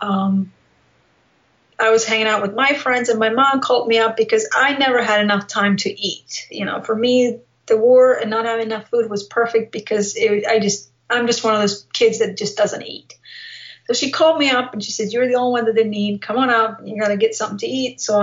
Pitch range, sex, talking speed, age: 205-235 Hz, female, 245 wpm, 30-49